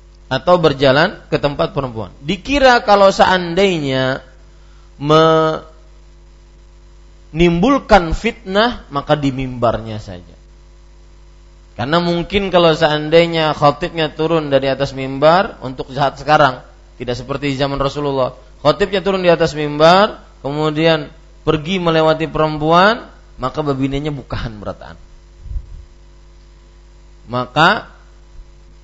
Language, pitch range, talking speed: Malay, 120-185 Hz, 90 wpm